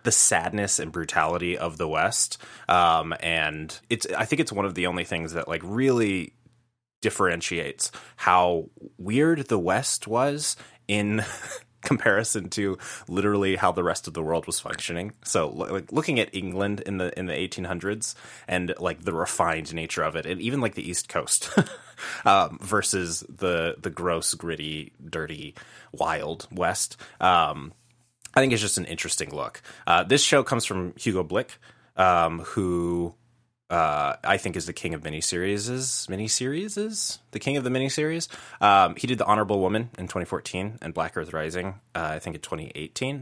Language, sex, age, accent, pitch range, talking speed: English, male, 20-39, American, 90-120 Hz, 165 wpm